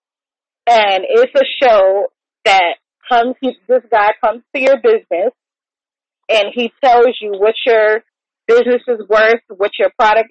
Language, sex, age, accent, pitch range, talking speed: English, female, 30-49, American, 185-235 Hz, 145 wpm